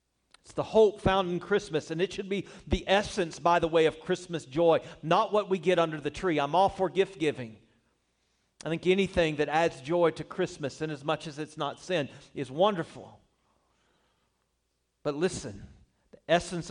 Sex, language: male, English